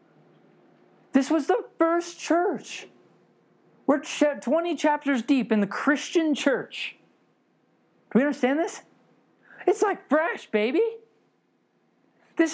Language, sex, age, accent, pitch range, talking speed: English, male, 30-49, American, 210-305 Hz, 105 wpm